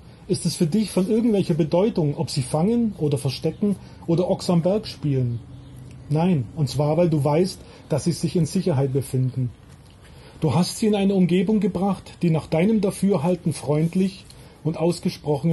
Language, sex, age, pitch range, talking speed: German, male, 30-49, 150-190 Hz, 165 wpm